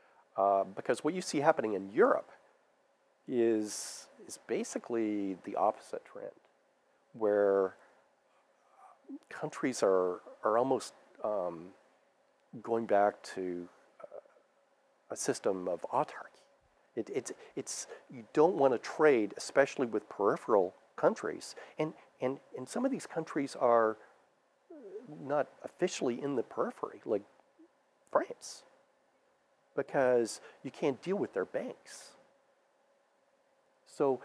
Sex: male